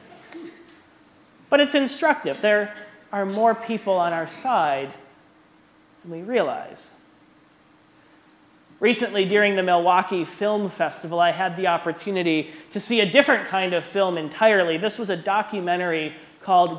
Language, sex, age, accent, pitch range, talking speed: English, male, 30-49, American, 165-210 Hz, 130 wpm